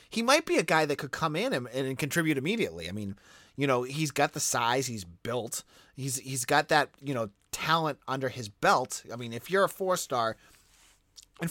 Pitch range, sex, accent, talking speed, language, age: 115-160 Hz, male, American, 205 wpm, English, 30-49